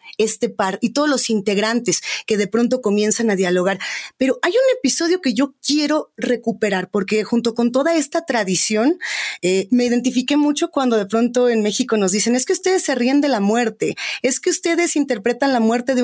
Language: Spanish